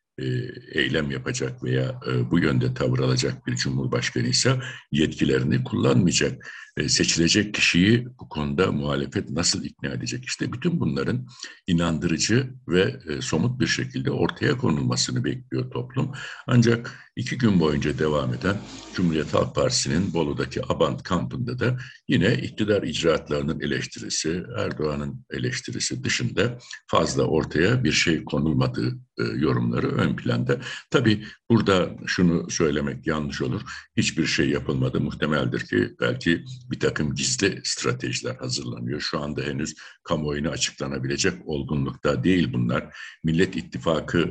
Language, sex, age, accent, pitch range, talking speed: Turkish, male, 60-79, native, 65-105 Hz, 120 wpm